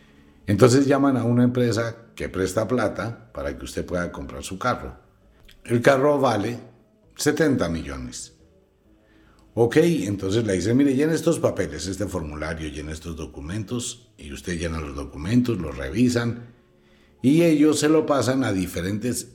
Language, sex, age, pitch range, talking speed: Spanish, male, 60-79, 80-120 Hz, 145 wpm